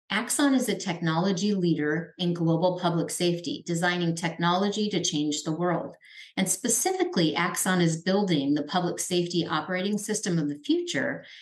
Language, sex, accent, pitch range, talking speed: English, female, American, 155-195 Hz, 145 wpm